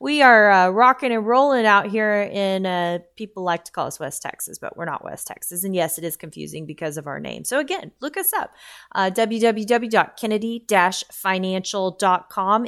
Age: 20-39